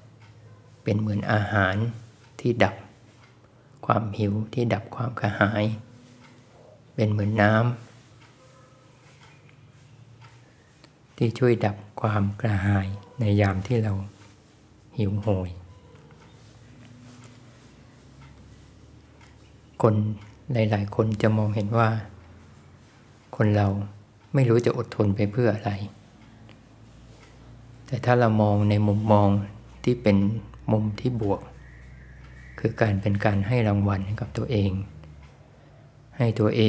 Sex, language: male, Thai